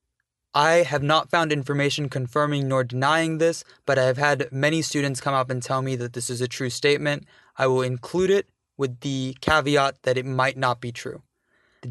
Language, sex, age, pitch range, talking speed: English, male, 20-39, 125-145 Hz, 200 wpm